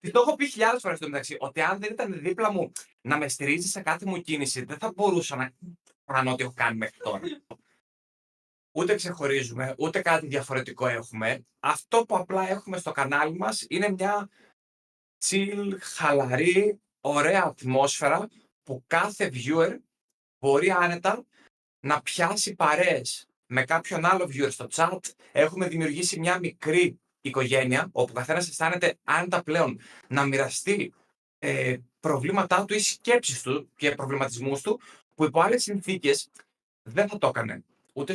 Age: 30-49